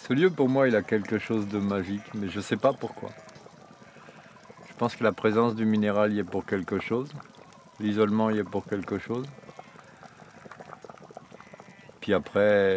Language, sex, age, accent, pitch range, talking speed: French, male, 50-69, French, 100-120 Hz, 170 wpm